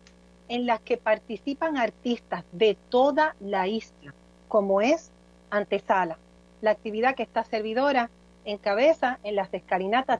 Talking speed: 130 wpm